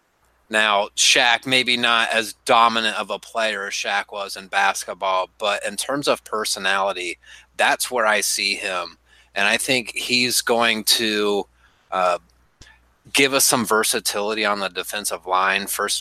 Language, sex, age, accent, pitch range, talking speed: English, male, 30-49, American, 95-115 Hz, 150 wpm